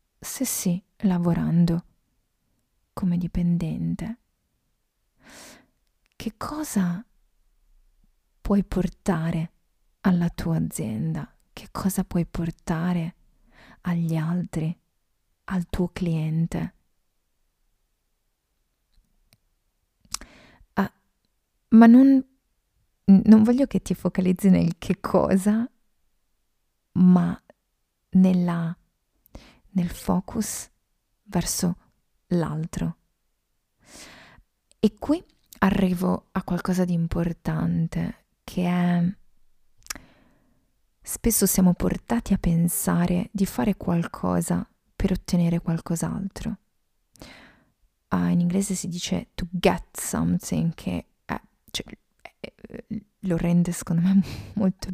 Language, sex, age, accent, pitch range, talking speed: Italian, female, 30-49, native, 170-195 Hz, 85 wpm